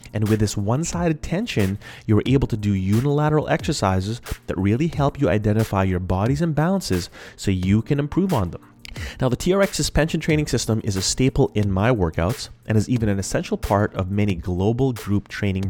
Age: 30-49